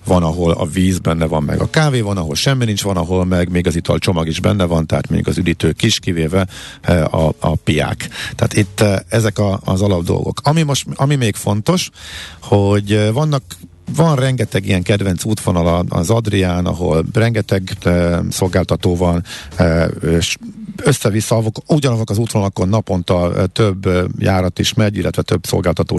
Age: 50-69